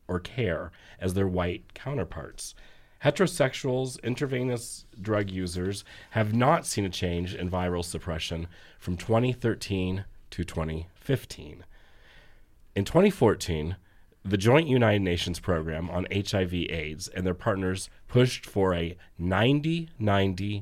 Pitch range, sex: 85-110 Hz, male